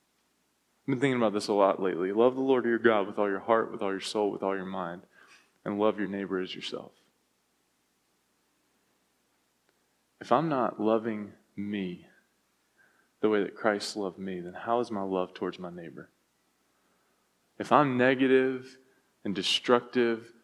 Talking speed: 160 wpm